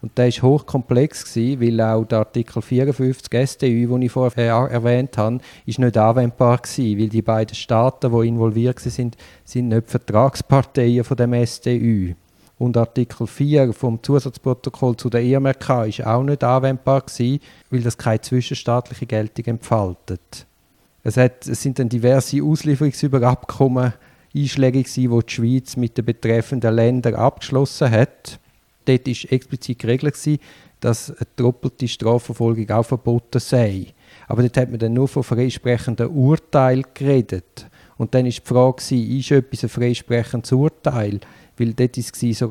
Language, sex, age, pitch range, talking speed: German, male, 50-69, 115-130 Hz, 145 wpm